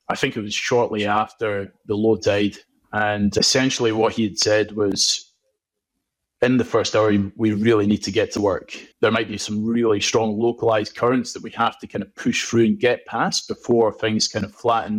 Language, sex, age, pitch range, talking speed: English, male, 20-39, 105-125 Hz, 205 wpm